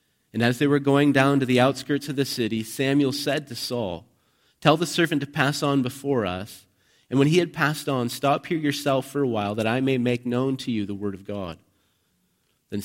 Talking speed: 225 wpm